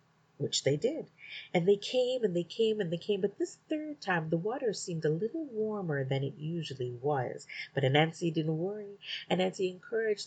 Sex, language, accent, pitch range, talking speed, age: female, English, American, 140-205 Hz, 185 wpm, 30-49